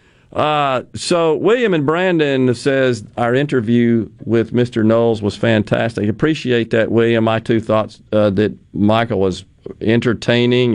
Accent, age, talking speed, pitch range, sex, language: American, 40-59, 135 wpm, 110-140 Hz, male, English